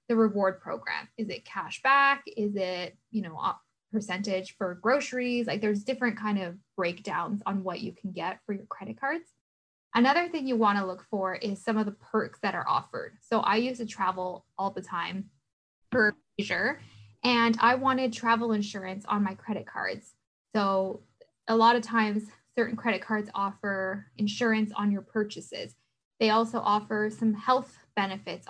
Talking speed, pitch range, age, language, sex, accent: 175 wpm, 195-230 Hz, 10-29, English, female, American